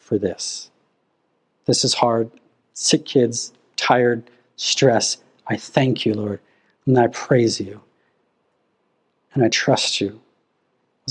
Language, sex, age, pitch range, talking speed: English, male, 40-59, 130-165 Hz, 120 wpm